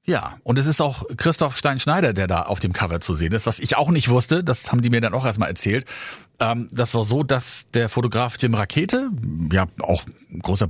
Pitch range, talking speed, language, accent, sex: 105-135 Hz, 220 wpm, German, German, male